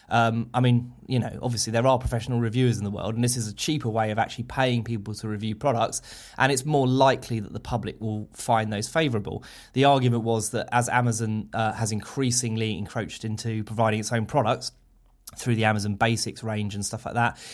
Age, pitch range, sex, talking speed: 20-39, 105-125 Hz, male, 210 wpm